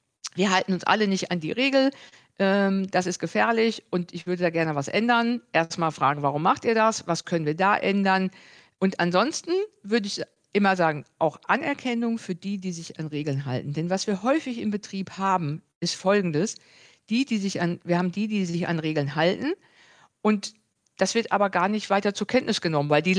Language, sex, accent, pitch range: German, female, German, 165-230 Hz